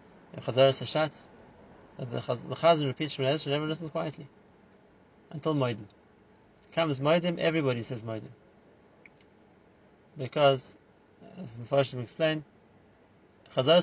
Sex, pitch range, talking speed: male, 130-165 Hz, 100 wpm